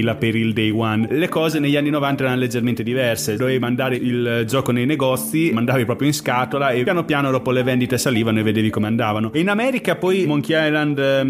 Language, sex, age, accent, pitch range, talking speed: Italian, male, 30-49, native, 120-145 Hz, 200 wpm